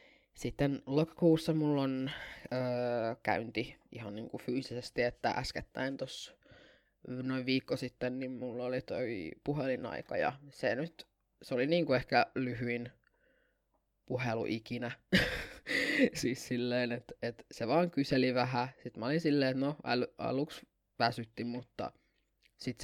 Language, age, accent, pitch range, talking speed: Finnish, 20-39, native, 125-155 Hz, 125 wpm